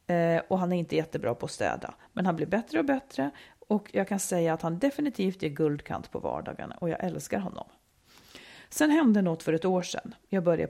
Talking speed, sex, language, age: 210 wpm, female, Swedish, 40-59